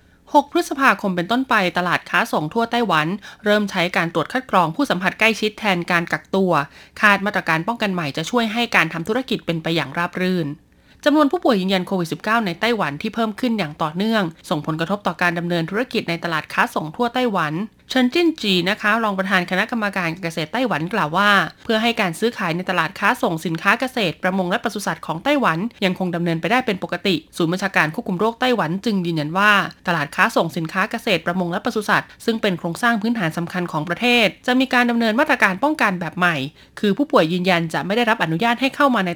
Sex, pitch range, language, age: female, 175-230 Hz, Thai, 20-39